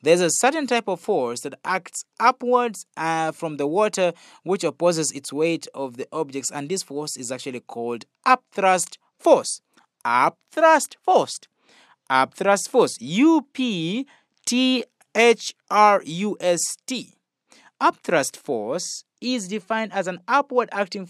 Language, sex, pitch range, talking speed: English, male, 150-230 Hz, 115 wpm